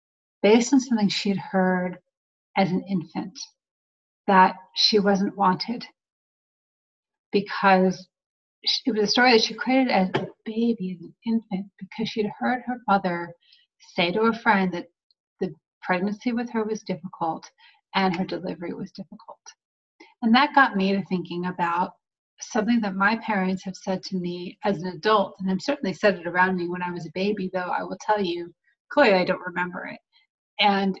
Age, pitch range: 30-49, 185-220 Hz